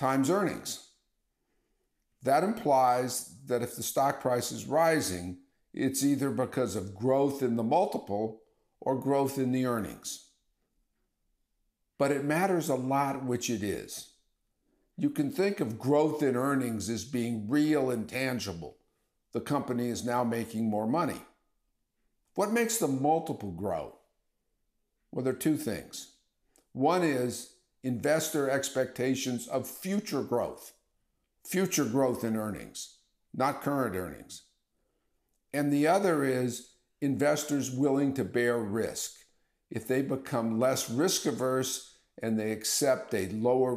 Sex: male